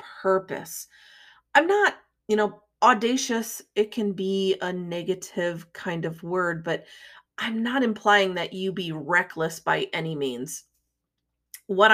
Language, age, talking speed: English, 30-49, 130 wpm